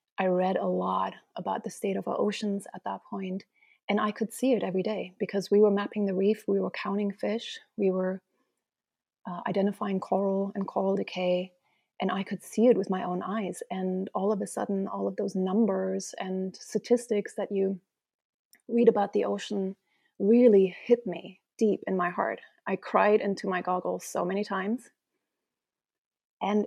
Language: English